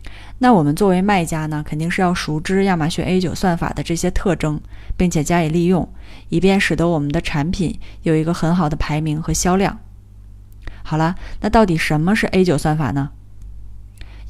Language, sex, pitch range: Chinese, female, 145-185 Hz